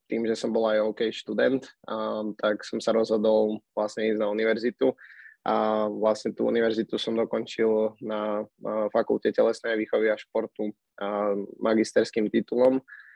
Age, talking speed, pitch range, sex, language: 20-39, 140 wpm, 105-115 Hz, male, Slovak